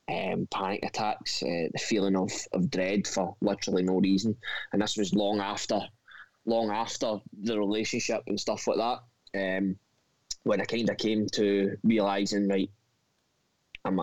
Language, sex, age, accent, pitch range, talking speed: English, male, 20-39, British, 100-115 Hz, 155 wpm